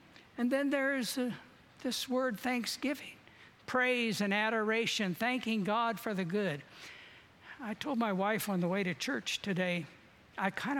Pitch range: 185-225 Hz